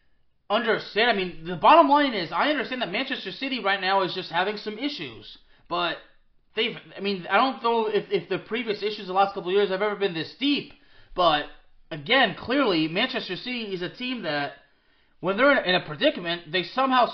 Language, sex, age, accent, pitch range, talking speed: English, male, 20-39, American, 180-230 Hz, 205 wpm